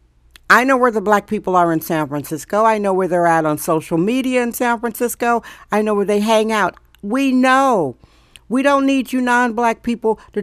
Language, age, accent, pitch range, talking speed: English, 60-79, American, 185-235 Hz, 205 wpm